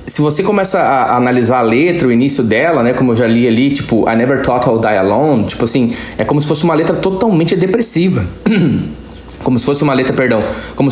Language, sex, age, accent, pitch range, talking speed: Portuguese, male, 20-39, Brazilian, 120-160 Hz, 220 wpm